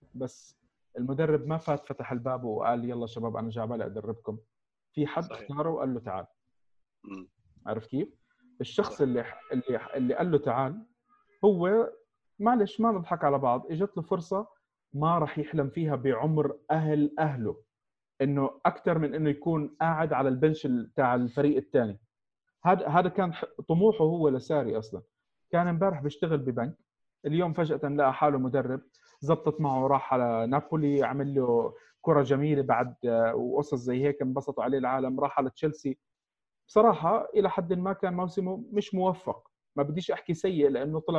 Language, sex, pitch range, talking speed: Arabic, male, 130-175 Hz, 150 wpm